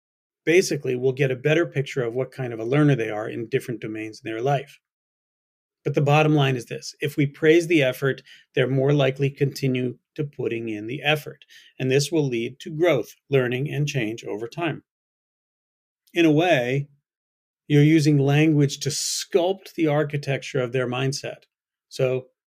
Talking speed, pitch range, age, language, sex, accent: 175 wpm, 130-155 Hz, 40-59, English, male, American